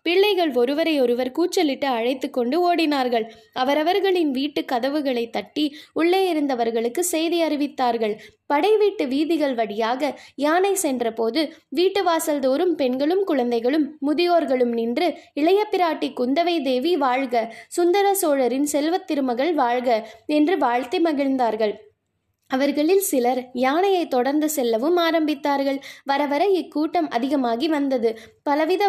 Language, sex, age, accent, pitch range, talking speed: Tamil, female, 20-39, native, 250-330 Hz, 105 wpm